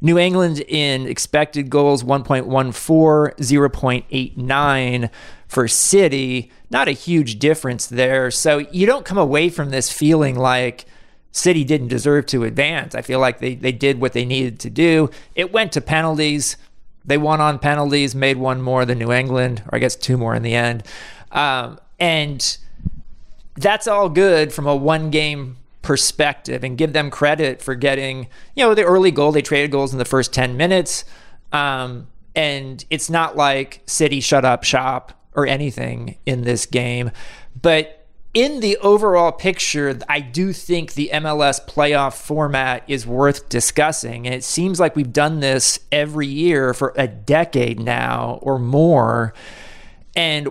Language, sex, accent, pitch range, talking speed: English, male, American, 130-155 Hz, 160 wpm